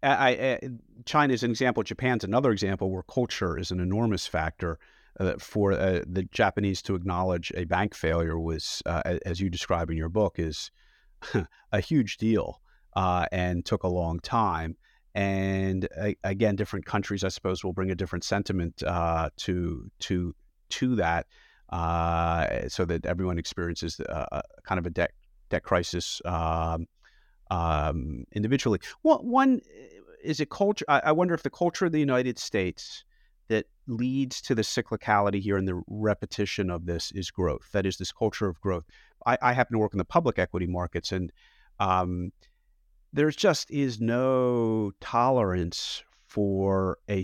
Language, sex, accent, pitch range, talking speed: English, male, American, 85-110 Hz, 165 wpm